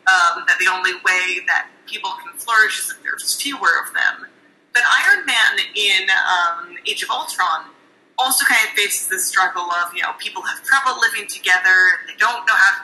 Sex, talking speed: female, 195 wpm